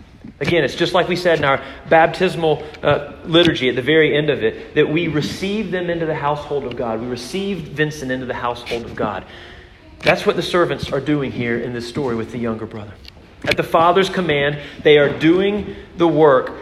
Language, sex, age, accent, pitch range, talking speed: English, male, 30-49, American, 135-185 Hz, 205 wpm